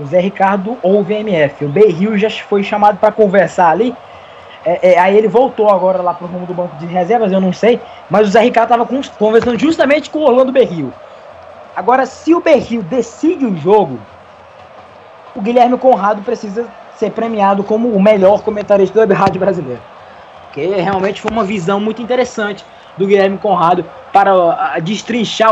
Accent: Brazilian